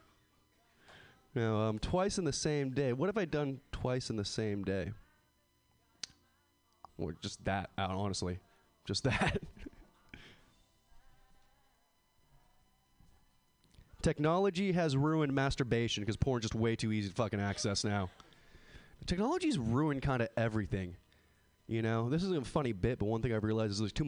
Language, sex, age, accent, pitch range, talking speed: English, male, 20-39, American, 105-140 Hz, 140 wpm